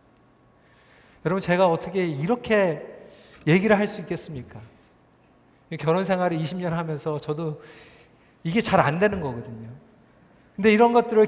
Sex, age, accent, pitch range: male, 40-59, native, 150-225 Hz